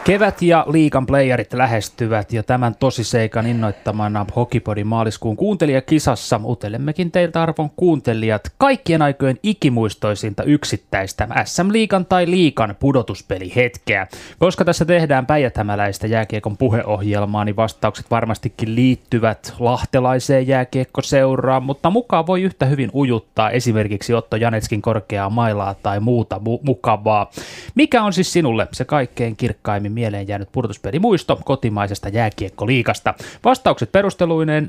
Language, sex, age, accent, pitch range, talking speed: Finnish, male, 20-39, native, 105-140 Hz, 110 wpm